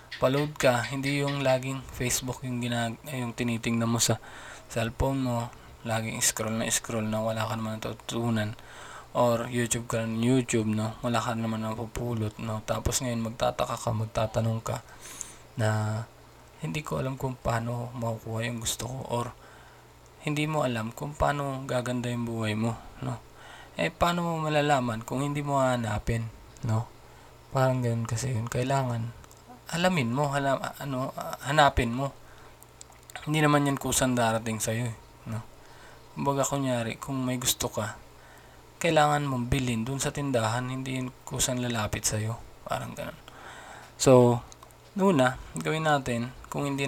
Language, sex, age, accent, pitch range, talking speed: Filipino, male, 20-39, native, 115-135 Hz, 150 wpm